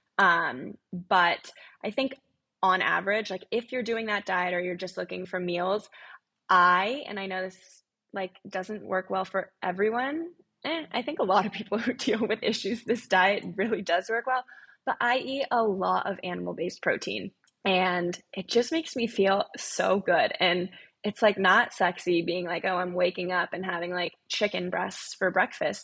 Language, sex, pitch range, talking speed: English, female, 185-230 Hz, 190 wpm